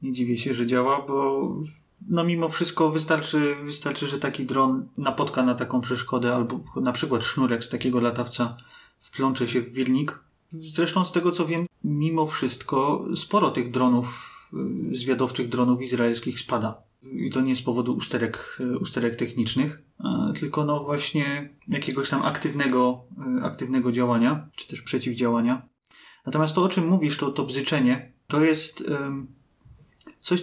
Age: 30-49